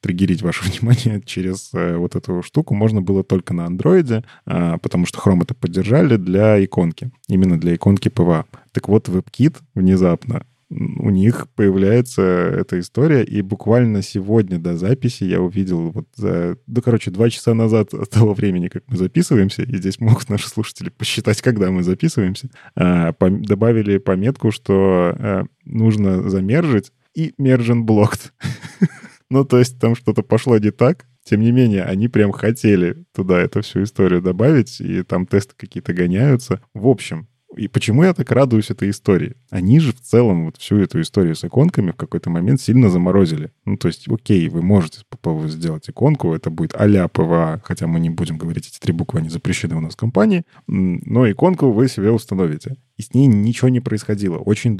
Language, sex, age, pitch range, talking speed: Russian, male, 20-39, 90-125 Hz, 175 wpm